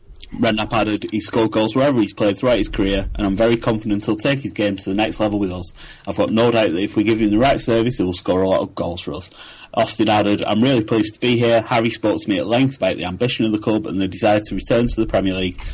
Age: 30-49